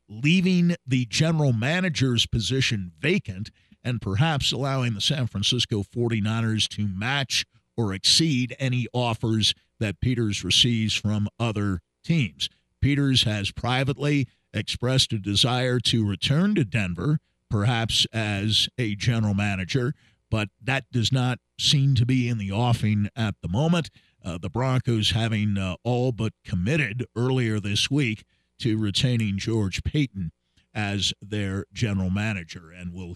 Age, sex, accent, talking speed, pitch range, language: 50-69, male, American, 135 wpm, 100-130 Hz, English